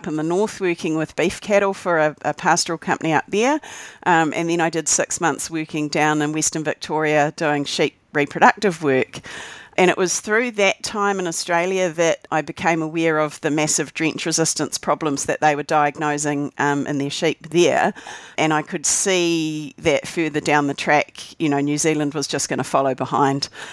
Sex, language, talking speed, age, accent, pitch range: female, English, 195 wpm, 40-59, Australian, 145-160 Hz